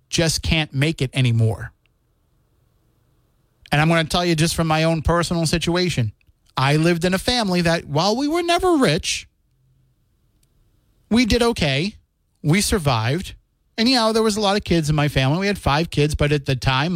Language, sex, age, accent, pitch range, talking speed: English, male, 30-49, American, 130-175 Hz, 190 wpm